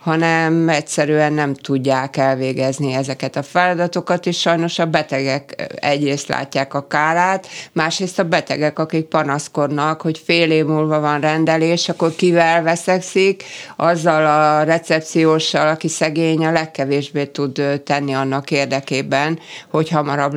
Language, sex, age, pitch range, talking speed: Hungarian, female, 60-79, 140-160 Hz, 125 wpm